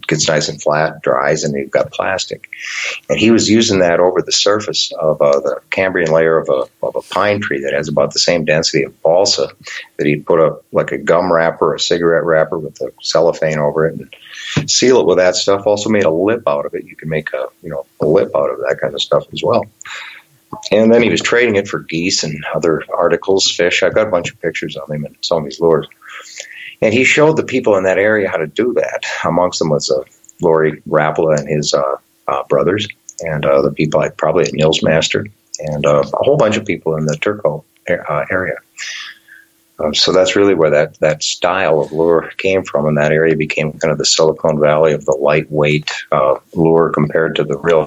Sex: male